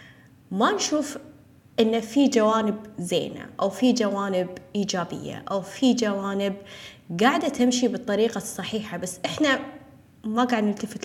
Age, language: 20-39, Arabic